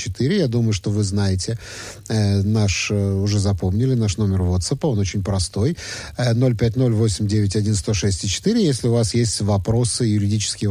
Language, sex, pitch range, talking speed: Russian, male, 105-145 Hz, 125 wpm